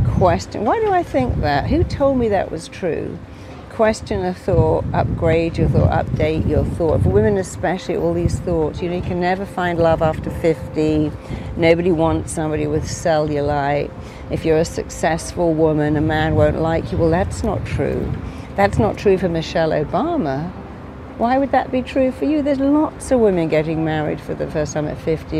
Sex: female